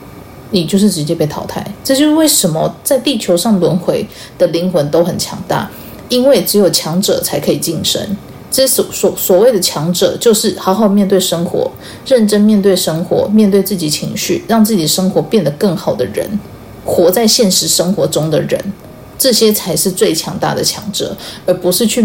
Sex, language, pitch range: female, Chinese, 175-225 Hz